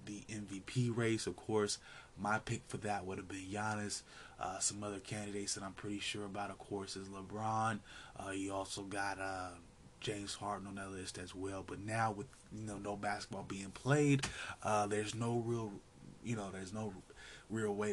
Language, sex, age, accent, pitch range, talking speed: English, male, 20-39, American, 95-110 Hz, 190 wpm